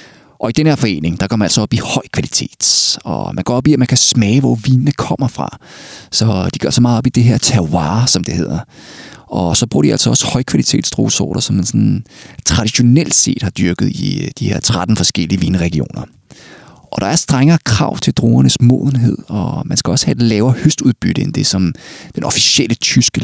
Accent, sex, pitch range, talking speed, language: native, male, 95-130 Hz, 210 wpm, Danish